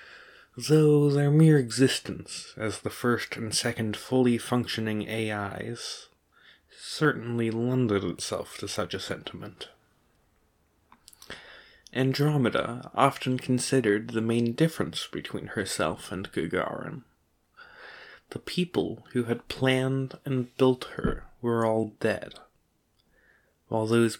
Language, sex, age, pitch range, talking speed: English, male, 20-39, 110-140 Hz, 105 wpm